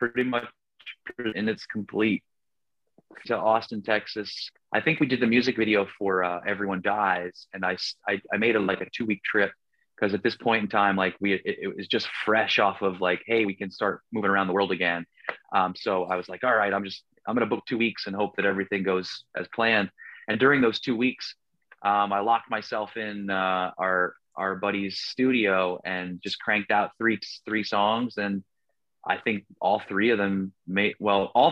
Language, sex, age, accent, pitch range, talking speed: English, male, 30-49, American, 100-125 Hz, 210 wpm